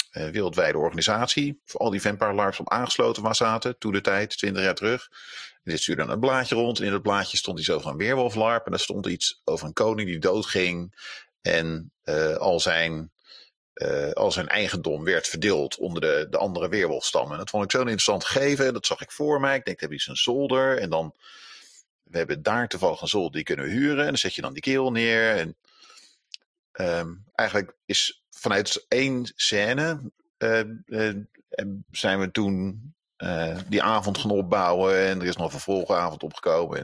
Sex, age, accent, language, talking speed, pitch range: male, 40-59, Dutch, Dutch, 195 wpm, 95-135 Hz